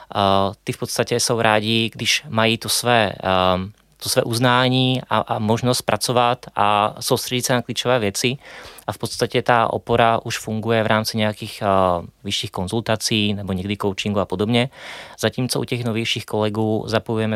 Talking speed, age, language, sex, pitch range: 165 wpm, 20-39, Czech, male, 100-115 Hz